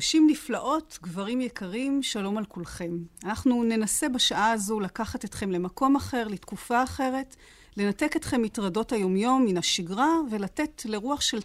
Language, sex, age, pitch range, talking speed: Hebrew, female, 40-59, 200-265 Hz, 135 wpm